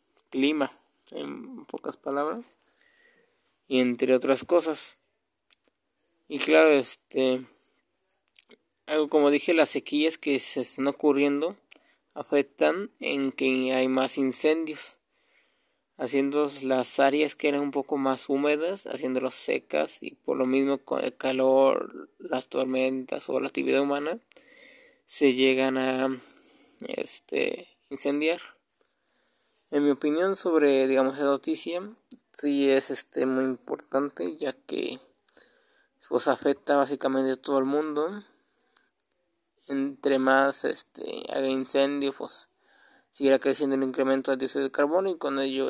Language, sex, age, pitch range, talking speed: Spanish, male, 20-39, 135-155 Hz, 120 wpm